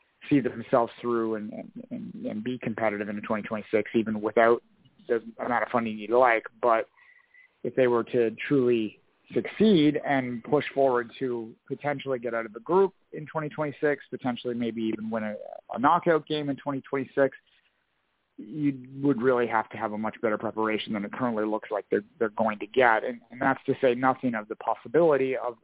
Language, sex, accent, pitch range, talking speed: English, male, American, 115-145 Hz, 180 wpm